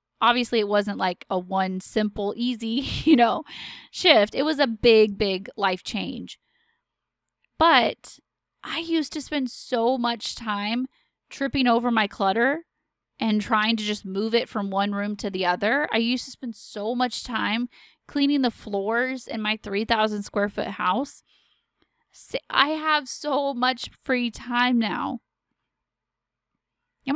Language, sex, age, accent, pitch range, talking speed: English, female, 20-39, American, 210-275 Hz, 145 wpm